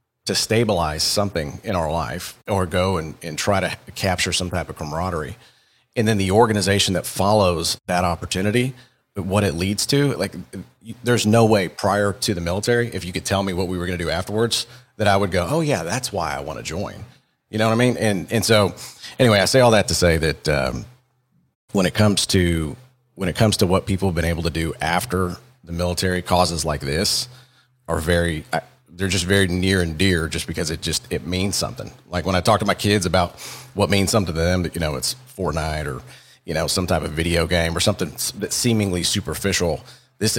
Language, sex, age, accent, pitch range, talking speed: English, male, 40-59, American, 85-110 Hz, 220 wpm